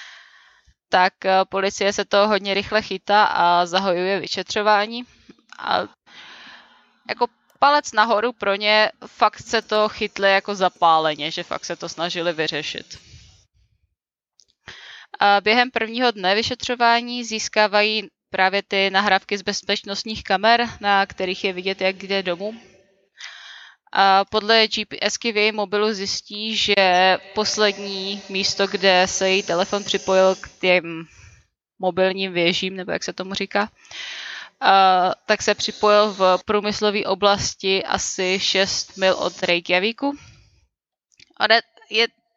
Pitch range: 190-215 Hz